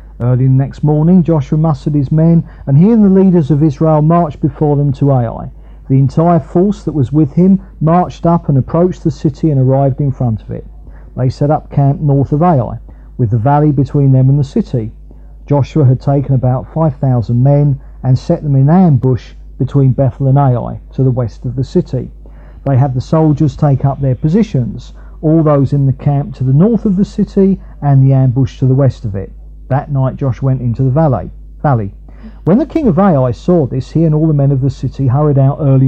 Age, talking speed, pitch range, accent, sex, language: 50-69, 210 wpm, 130-160 Hz, British, male, English